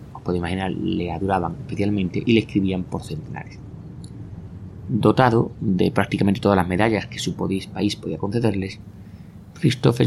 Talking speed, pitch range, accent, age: 130 wpm, 90-105 Hz, Spanish, 30-49